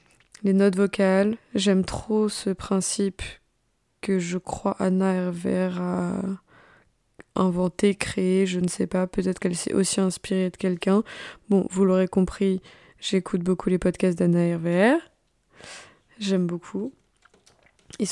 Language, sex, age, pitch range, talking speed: French, female, 20-39, 180-200 Hz, 130 wpm